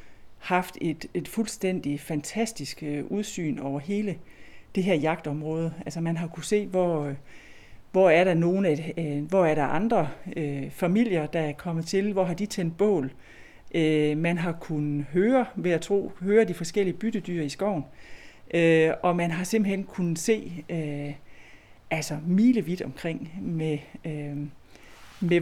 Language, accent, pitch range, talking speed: Danish, native, 150-180 Hz, 150 wpm